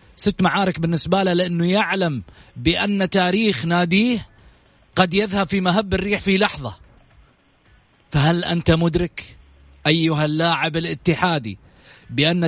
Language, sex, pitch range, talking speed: Arabic, male, 125-180 Hz, 110 wpm